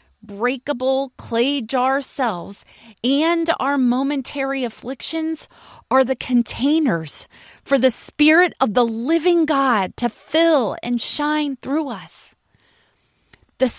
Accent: American